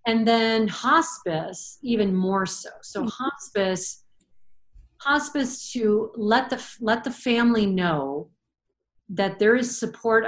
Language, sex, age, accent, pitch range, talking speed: English, female, 40-59, American, 185-225 Hz, 115 wpm